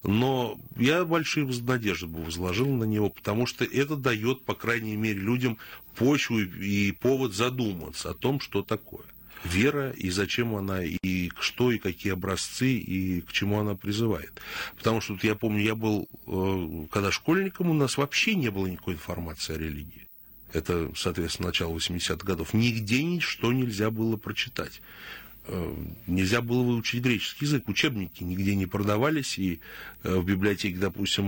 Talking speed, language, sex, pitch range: 150 wpm, Russian, male, 95-125 Hz